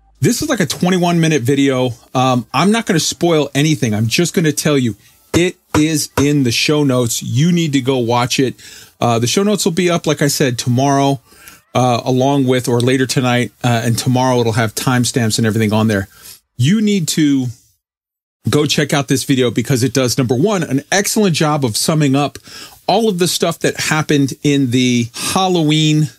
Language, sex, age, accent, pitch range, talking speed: English, male, 40-59, American, 120-150 Hz, 200 wpm